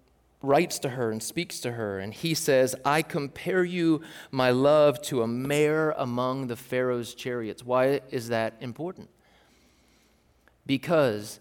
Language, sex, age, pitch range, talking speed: English, male, 30-49, 120-155 Hz, 140 wpm